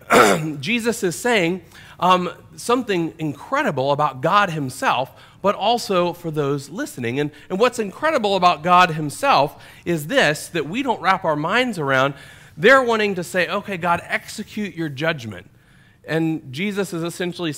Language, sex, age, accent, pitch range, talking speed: English, male, 40-59, American, 140-180 Hz, 145 wpm